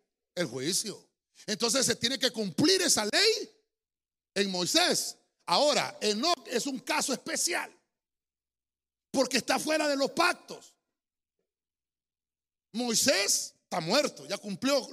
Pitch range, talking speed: 155-255 Hz, 115 wpm